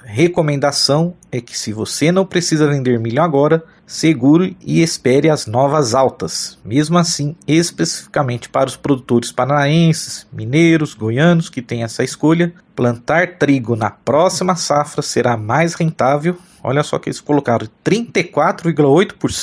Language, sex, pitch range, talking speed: Portuguese, male, 125-165 Hz, 130 wpm